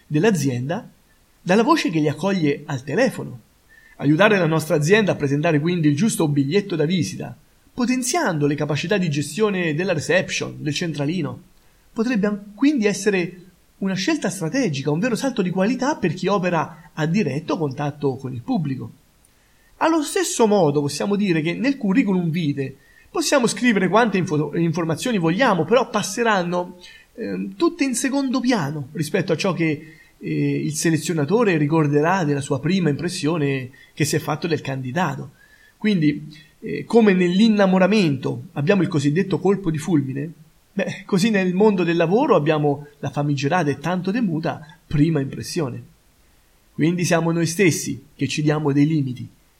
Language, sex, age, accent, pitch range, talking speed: Italian, male, 30-49, native, 150-215 Hz, 150 wpm